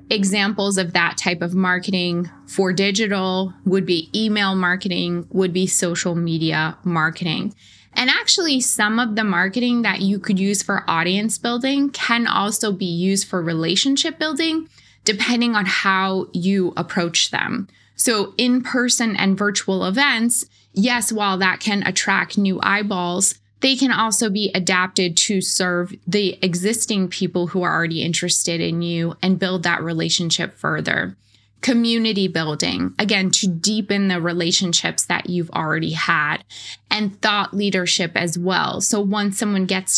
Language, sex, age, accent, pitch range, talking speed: English, female, 20-39, American, 175-210 Hz, 145 wpm